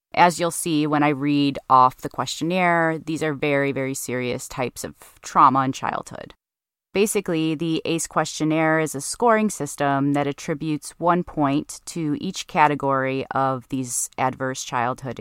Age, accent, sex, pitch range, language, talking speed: 20-39, American, female, 135-160 Hz, English, 150 wpm